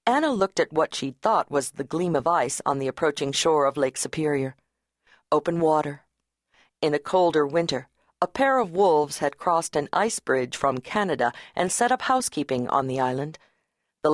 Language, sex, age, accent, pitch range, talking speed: English, female, 50-69, American, 140-180 Hz, 185 wpm